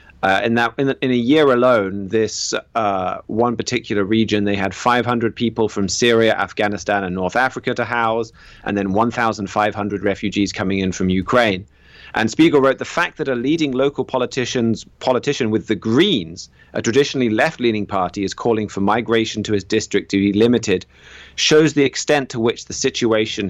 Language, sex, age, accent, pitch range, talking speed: English, male, 30-49, British, 100-120 Hz, 175 wpm